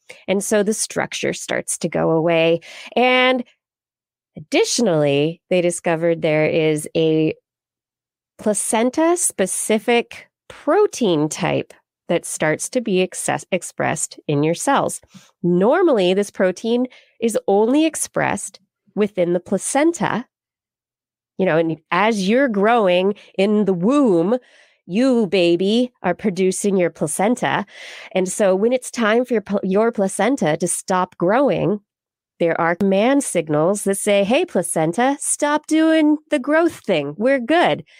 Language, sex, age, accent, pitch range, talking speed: English, female, 30-49, American, 170-240 Hz, 125 wpm